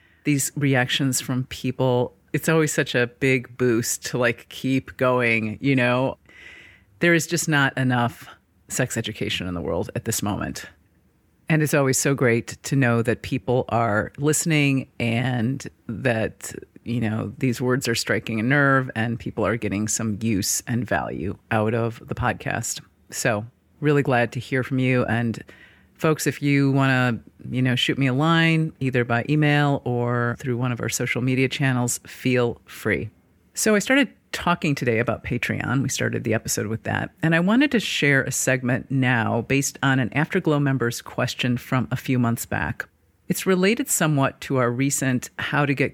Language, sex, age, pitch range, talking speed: English, female, 30-49, 115-145 Hz, 175 wpm